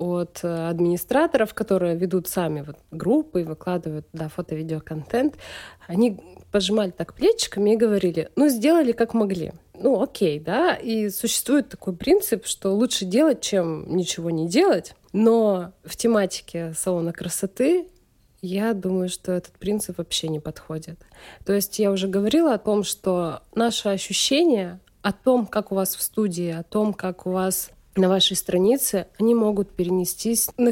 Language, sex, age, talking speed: Russian, female, 20-39, 145 wpm